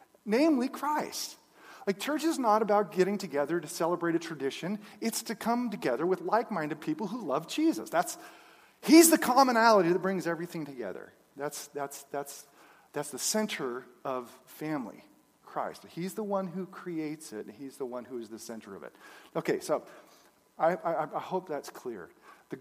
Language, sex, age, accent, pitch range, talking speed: English, male, 40-59, American, 140-225 Hz, 175 wpm